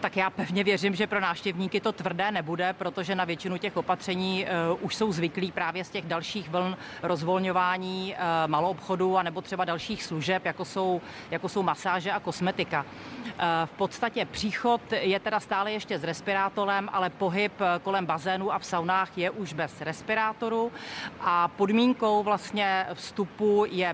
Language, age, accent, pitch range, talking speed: Czech, 40-59, native, 180-200 Hz, 155 wpm